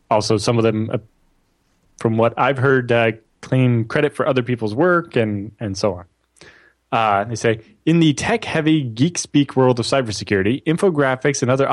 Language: English